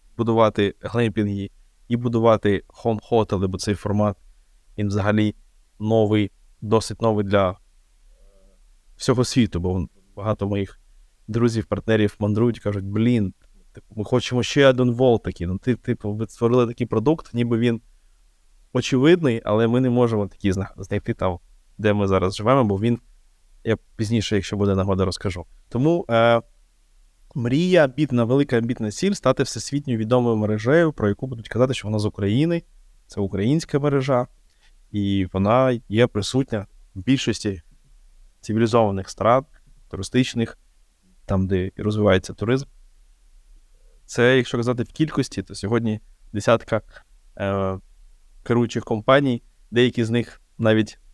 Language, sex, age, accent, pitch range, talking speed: Ukrainian, male, 20-39, native, 100-120 Hz, 130 wpm